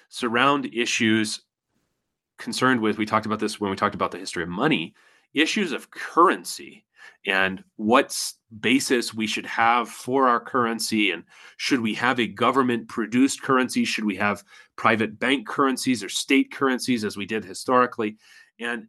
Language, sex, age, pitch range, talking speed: English, male, 30-49, 110-135 Hz, 155 wpm